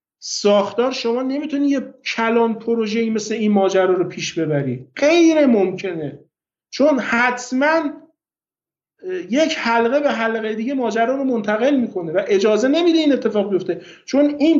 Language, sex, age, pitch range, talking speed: Persian, male, 50-69, 200-250 Hz, 135 wpm